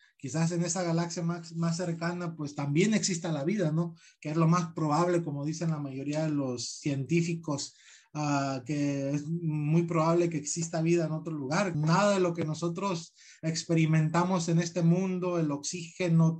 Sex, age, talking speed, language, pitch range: male, 30-49, 170 wpm, Spanish, 150-175 Hz